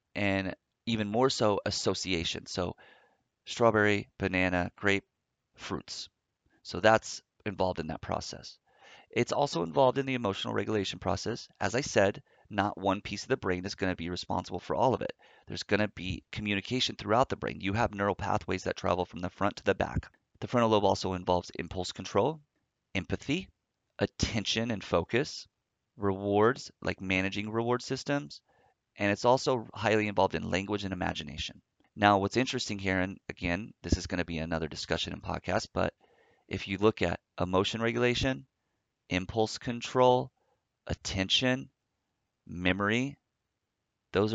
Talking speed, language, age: 155 wpm, English, 30-49